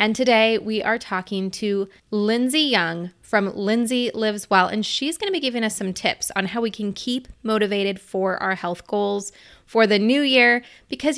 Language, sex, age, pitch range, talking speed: English, female, 20-39, 190-250 Hz, 195 wpm